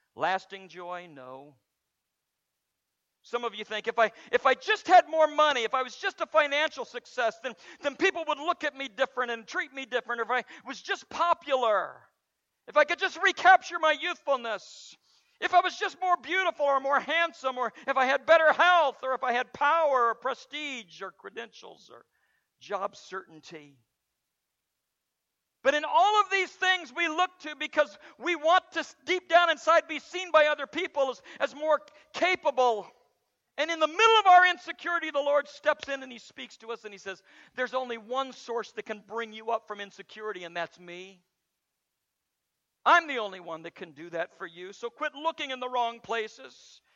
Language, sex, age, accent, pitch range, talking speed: English, male, 50-69, American, 230-315 Hz, 190 wpm